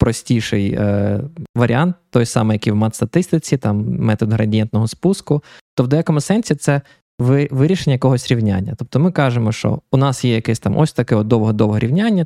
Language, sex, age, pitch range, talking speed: Ukrainian, male, 20-39, 120-150 Hz, 170 wpm